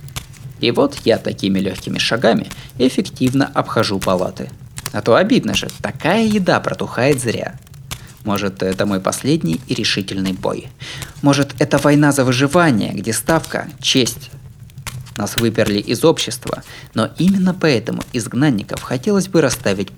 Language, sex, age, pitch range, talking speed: Russian, male, 20-39, 110-140 Hz, 130 wpm